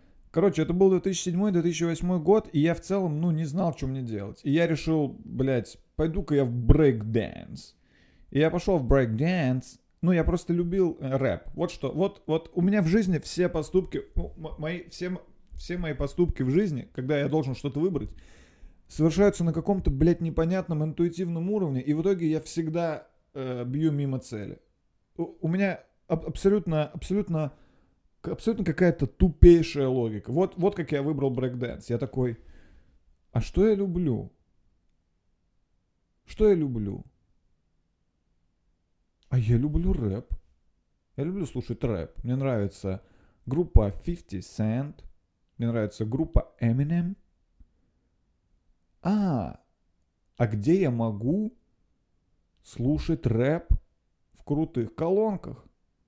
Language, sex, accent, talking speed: Russian, male, native, 130 wpm